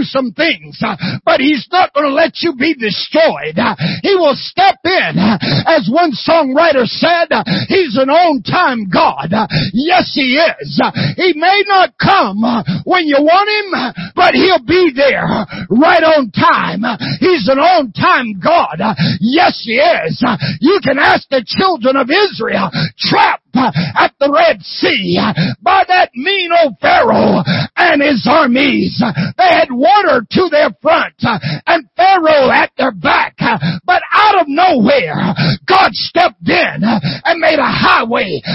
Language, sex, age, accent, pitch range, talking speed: English, male, 50-69, American, 245-350 Hz, 140 wpm